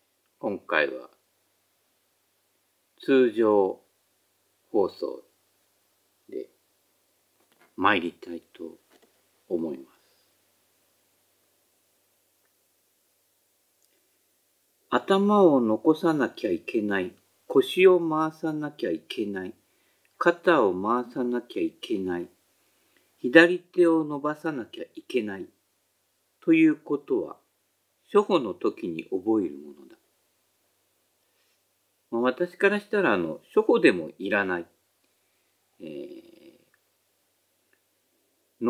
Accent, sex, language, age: native, male, Japanese, 50-69